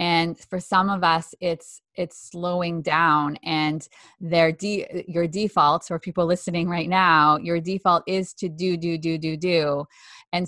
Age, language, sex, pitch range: 20-39, English, female, 165-190 Hz